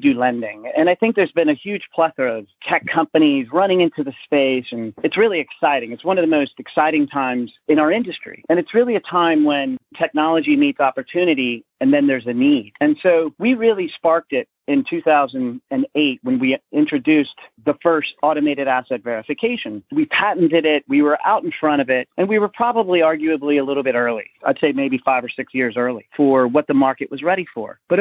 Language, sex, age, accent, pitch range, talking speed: English, male, 40-59, American, 140-195 Hz, 205 wpm